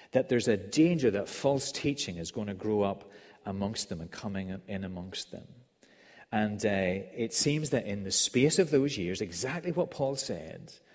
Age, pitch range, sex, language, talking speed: 40-59, 105-140 Hz, male, English, 185 wpm